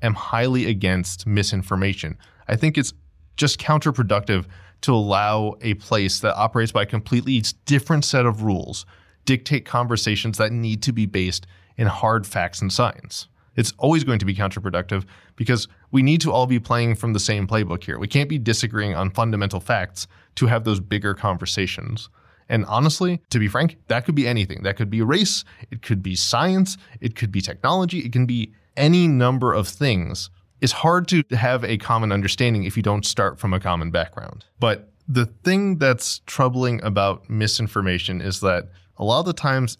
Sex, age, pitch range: male, 20-39, 95-120 Hz